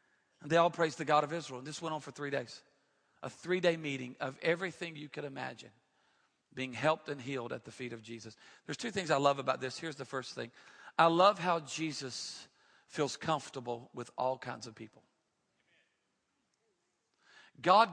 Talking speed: 180 wpm